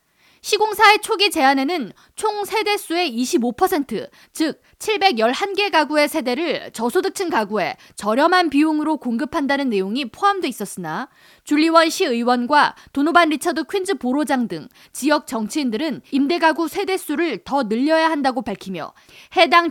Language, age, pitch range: Korean, 20-39, 260-345 Hz